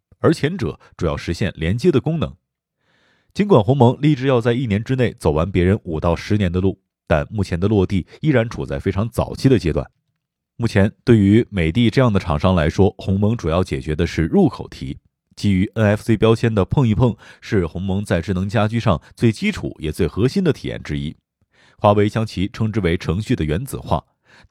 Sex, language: male, Chinese